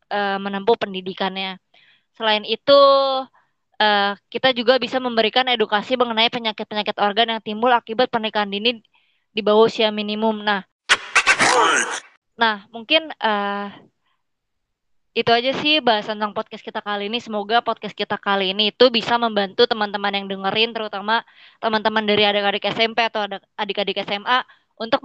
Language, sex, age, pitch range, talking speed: Indonesian, female, 20-39, 200-235 Hz, 125 wpm